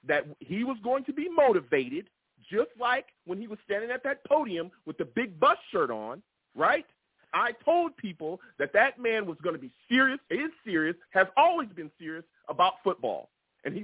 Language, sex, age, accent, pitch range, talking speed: English, male, 40-59, American, 155-250 Hz, 190 wpm